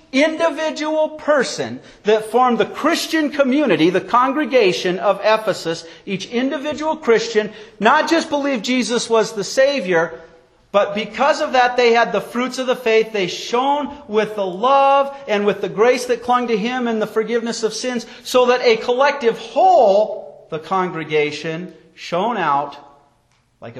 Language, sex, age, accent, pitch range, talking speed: English, male, 40-59, American, 165-255 Hz, 150 wpm